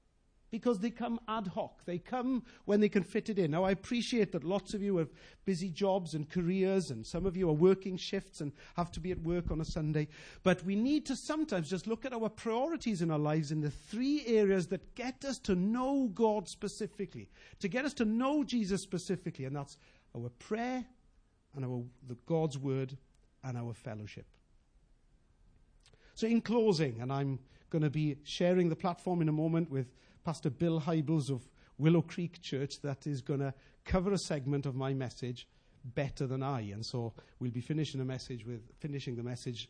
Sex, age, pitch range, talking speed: male, 50-69, 130-200 Hz, 190 wpm